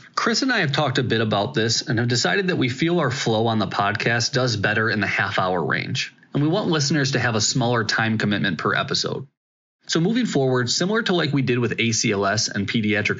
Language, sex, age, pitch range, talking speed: English, male, 20-39, 110-140 Hz, 230 wpm